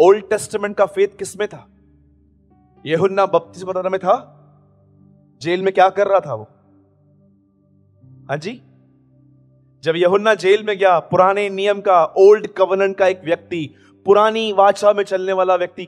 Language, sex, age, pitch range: Hindi, male, 30-49, 135-195 Hz